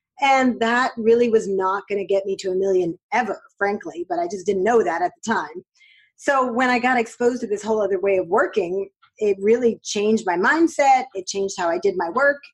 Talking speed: 225 wpm